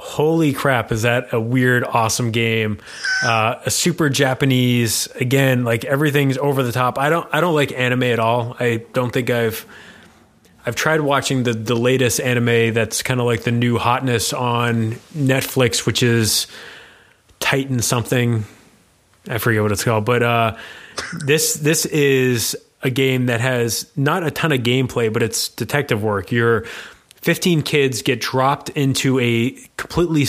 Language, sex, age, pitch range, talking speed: English, male, 20-39, 115-135 Hz, 160 wpm